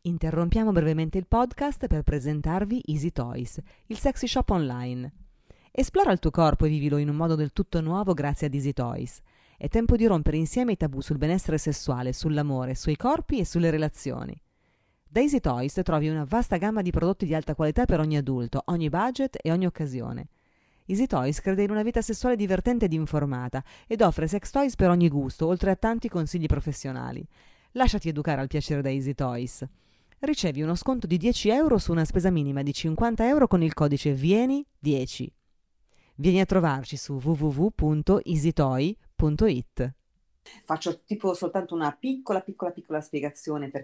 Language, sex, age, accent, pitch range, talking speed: Italian, female, 30-49, native, 140-195 Hz, 170 wpm